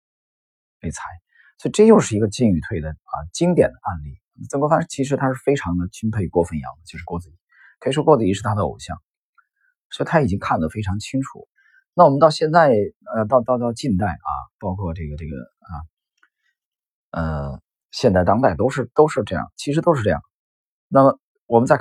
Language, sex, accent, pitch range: Chinese, male, native, 85-130 Hz